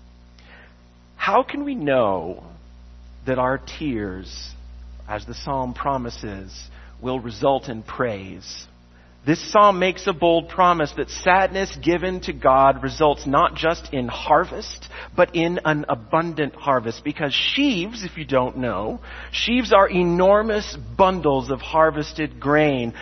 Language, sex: English, male